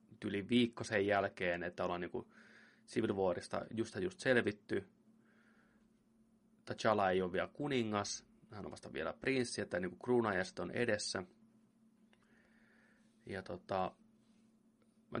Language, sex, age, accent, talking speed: Finnish, male, 30-49, native, 120 wpm